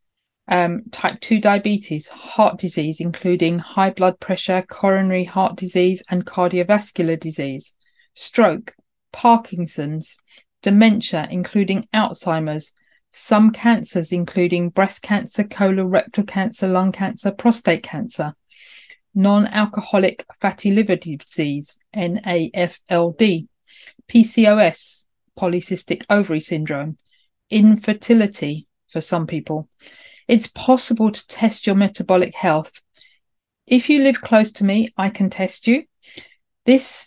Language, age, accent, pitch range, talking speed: English, 40-59, British, 175-220 Hz, 100 wpm